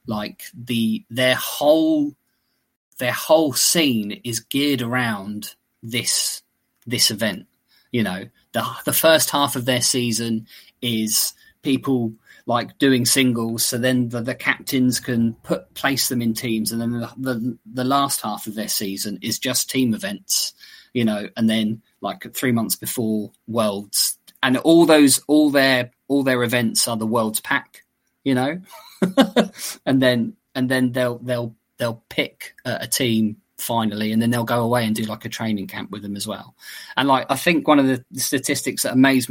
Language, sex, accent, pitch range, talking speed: English, male, British, 115-140 Hz, 170 wpm